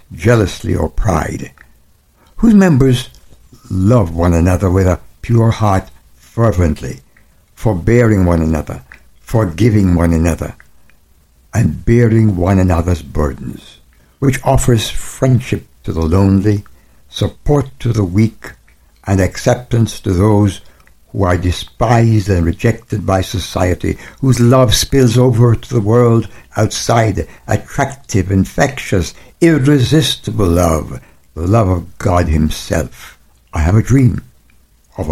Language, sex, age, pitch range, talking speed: English, male, 60-79, 85-120 Hz, 115 wpm